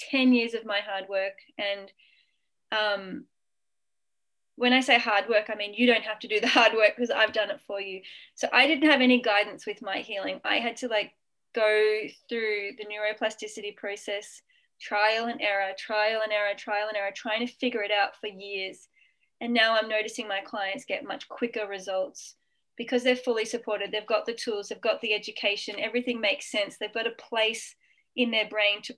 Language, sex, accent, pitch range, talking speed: English, female, Australian, 210-250 Hz, 200 wpm